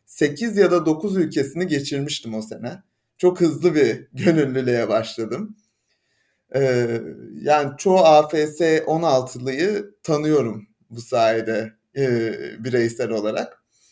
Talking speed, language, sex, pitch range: 105 wpm, Turkish, male, 125-165 Hz